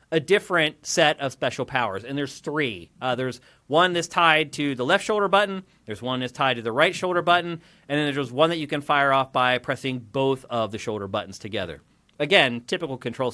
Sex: male